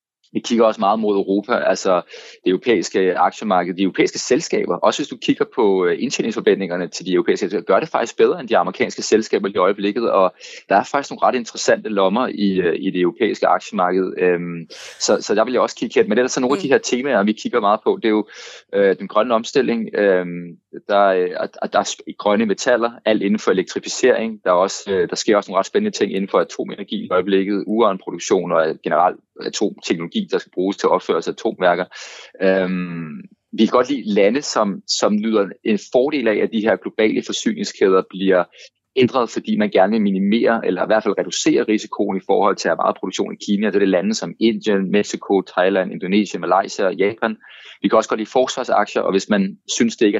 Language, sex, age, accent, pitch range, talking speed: Danish, male, 20-39, native, 95-125 Hz, 205 wpm